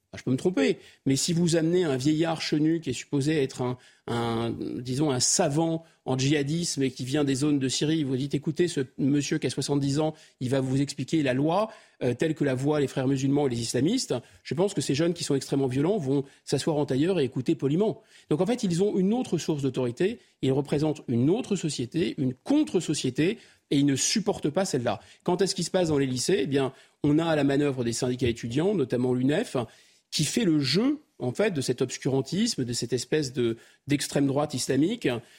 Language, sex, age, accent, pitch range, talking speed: French, male, 40-59, French, 135-165 Hz, 220 wpm